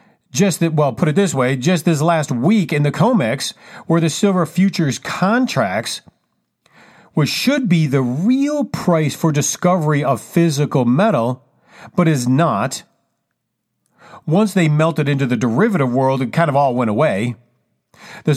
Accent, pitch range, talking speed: American, 140-185 Hz, 155 wpm